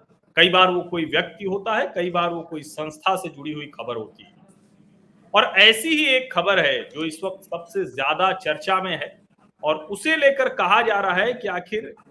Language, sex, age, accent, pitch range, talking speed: Hindi, male, 40-59, native, 170-220 Hz, 205 wpm